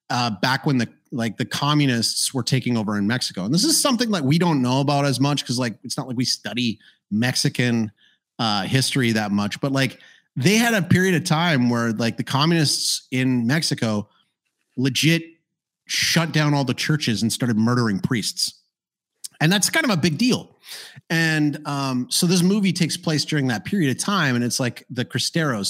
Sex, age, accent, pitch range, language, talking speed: male, 30-49, American, 125-165 Hz, English, 195 wpm